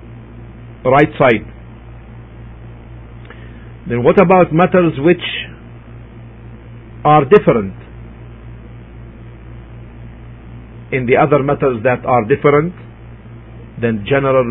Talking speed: 75 wpm